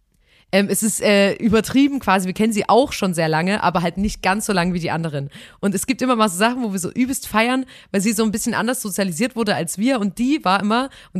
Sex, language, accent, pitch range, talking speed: female, German, German, 175-230 Hz, 265 wpm